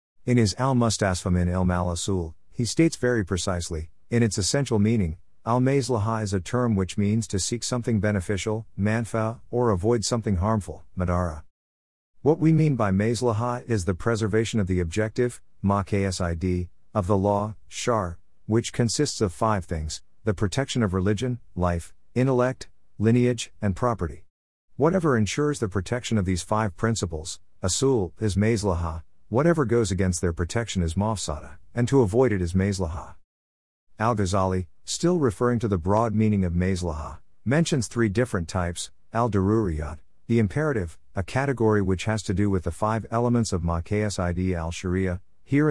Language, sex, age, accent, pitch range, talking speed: English, male, 50-69, American, 90-115 Hz, 150 wpm